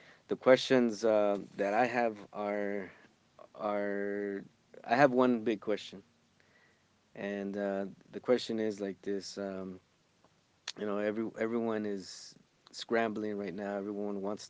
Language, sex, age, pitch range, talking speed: English, male, 30-49, 100-115 Hz, 130 wpm